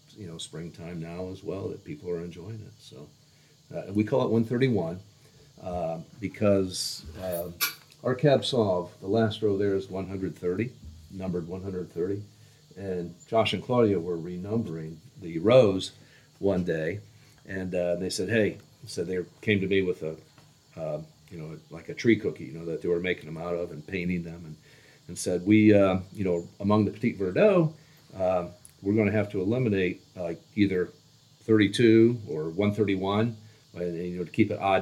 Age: 50-69